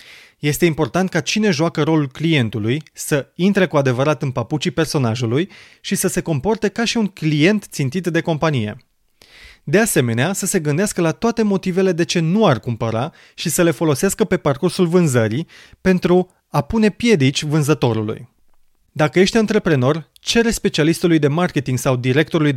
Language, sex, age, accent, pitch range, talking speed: Romanian, male, 30-49, native, 135-180 Hz, 155 wpm